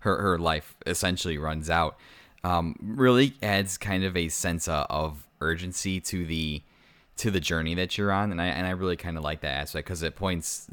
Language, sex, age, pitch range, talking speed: English, male, 20-39, 80-95 Hz, 200 wpm